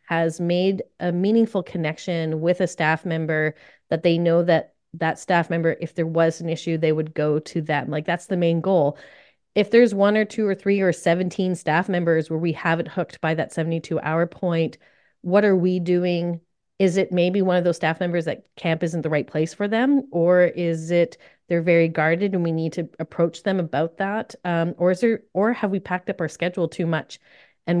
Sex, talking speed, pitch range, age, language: female, 215 wpm, 165-185 Hz, 30-49, English